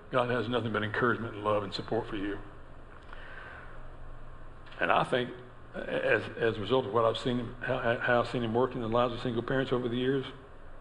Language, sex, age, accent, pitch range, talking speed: English, male, 60-79, American, 115-135 Hz, 205 wpm